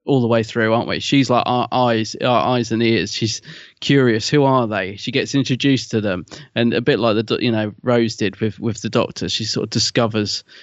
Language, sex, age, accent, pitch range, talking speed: English, male, 20-39, British, 110-125 Hz, 230 wpm